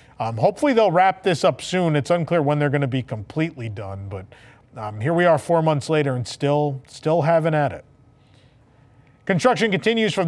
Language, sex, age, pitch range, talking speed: English, male, 40-59, 135-180 Hz, 195 wpm